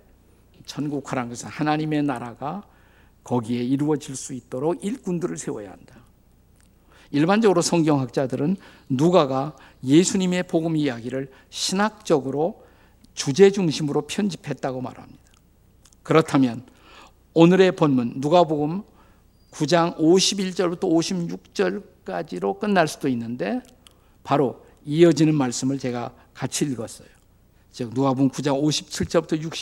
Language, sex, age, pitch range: Korean, male, 50-69, 130-175 Hz